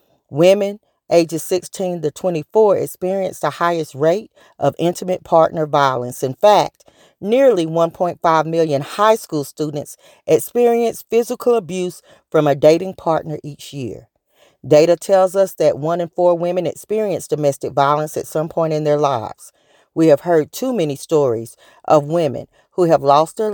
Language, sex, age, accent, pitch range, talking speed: English, female, 40-59, American, 150-185 Hz, 150 wpm